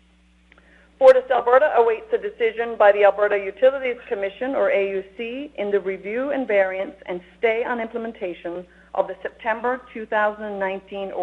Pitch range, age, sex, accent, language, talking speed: 195-235 Hz, 50-69, female, American, English, 130 wpm